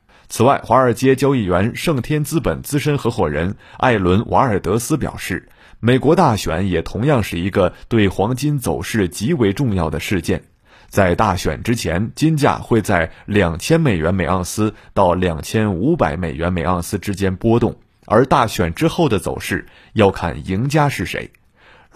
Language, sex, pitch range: Chinese, male, 90-125 Hz